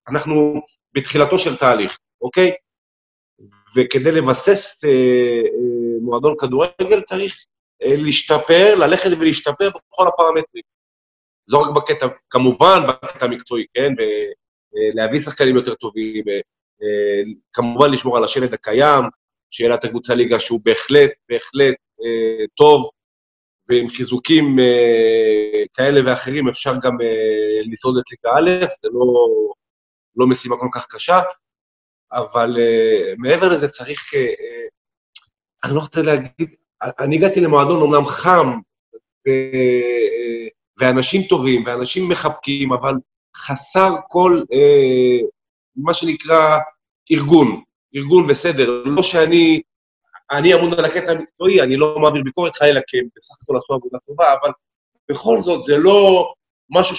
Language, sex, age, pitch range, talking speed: Hebrew, male, 40-59, 130-190 Hz, 120 wpm